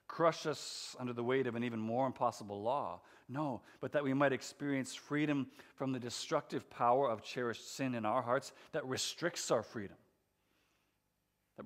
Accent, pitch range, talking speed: American, 115-165 Hz, 170 wpm